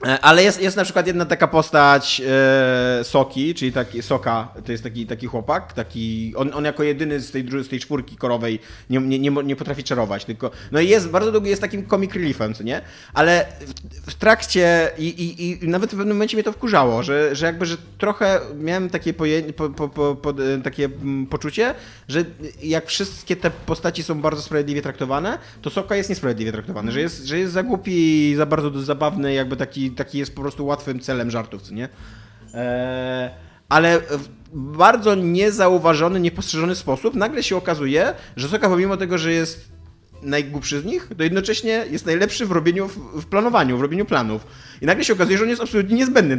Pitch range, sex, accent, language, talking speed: 130-185 Hz, male, native, Polish, 195 wpm